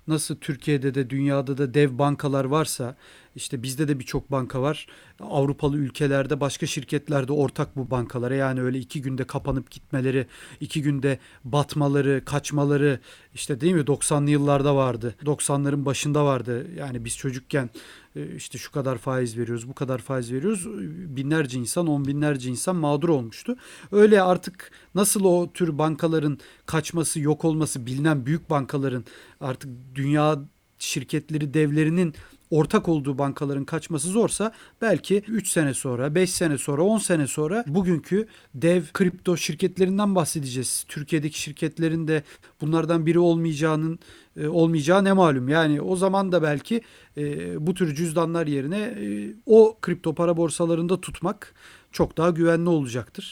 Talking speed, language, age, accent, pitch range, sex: 135 wpm, Turkish, 40-59, native, 140-170 Hz, male